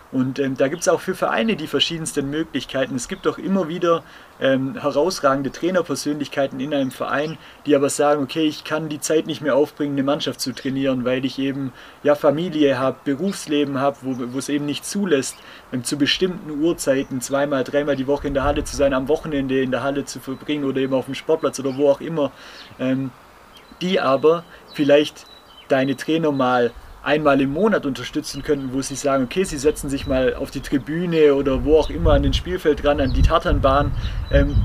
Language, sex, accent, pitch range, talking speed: German, male, German, 135-160 Hz, 195 wpm